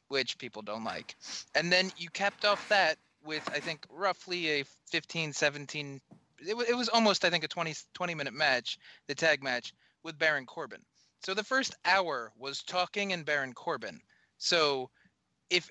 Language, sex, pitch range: English, male, 130-165 Hz